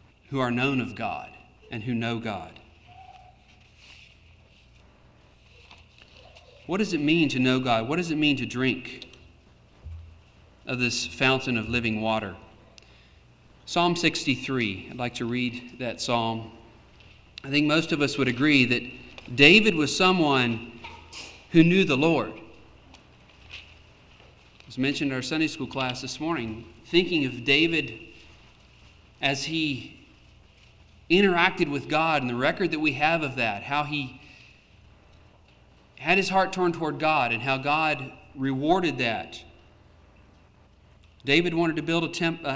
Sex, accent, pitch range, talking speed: male, American, 115-160 Hz, 135 wpm